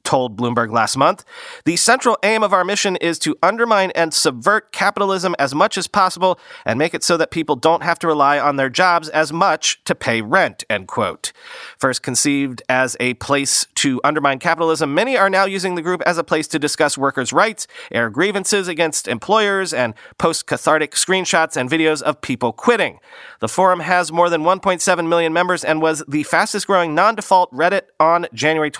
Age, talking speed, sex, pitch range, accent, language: 30-49, 190 wpm, male, 150-185 Hz, American, English